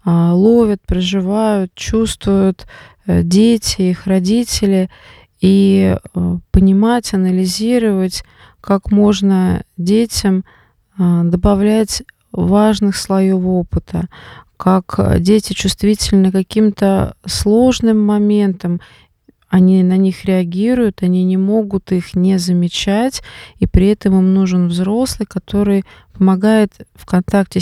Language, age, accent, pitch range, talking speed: Russian, 20-39, native, 185-210 Hz, 90 wpm